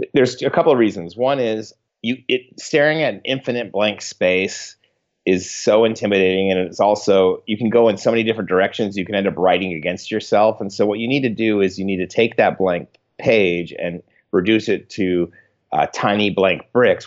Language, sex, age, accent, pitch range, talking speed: English, male, 30-49, American, 90-115 Hz, 210 wpm